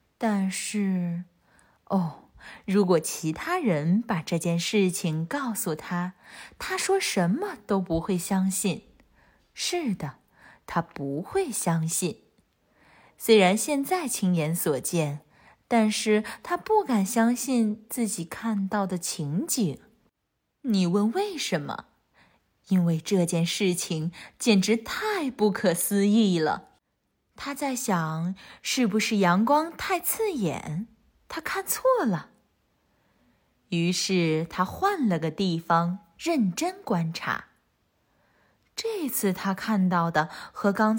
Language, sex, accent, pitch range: Chinese, female, native, 175-235 Hz